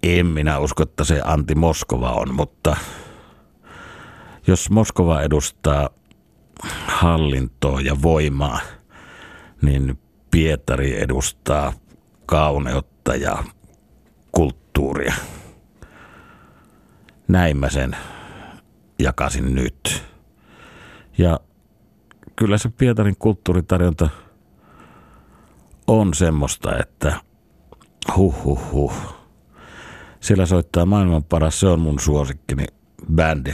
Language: Finnish